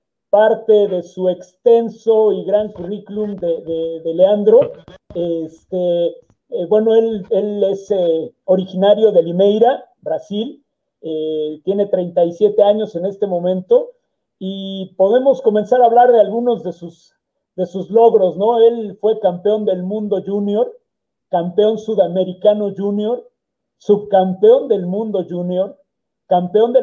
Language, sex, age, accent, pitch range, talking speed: Spanish, male, 50-69, Mexican, 180-225 Hz, 125 wpm